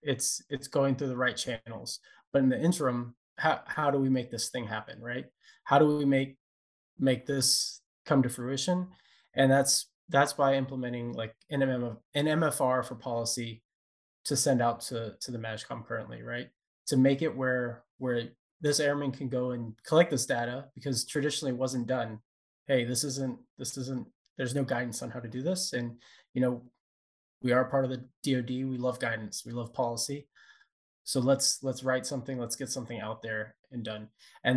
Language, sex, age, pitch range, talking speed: English, male, 20-39, 120-135 Hz, 185 wpm